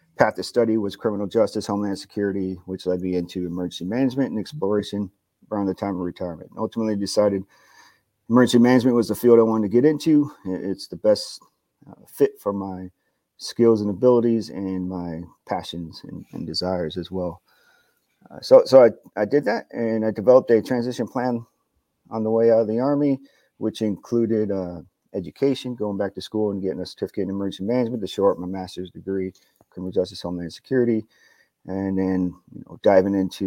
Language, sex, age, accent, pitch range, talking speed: English, male, 40-59, American, 95-115 Hz, 180 wpm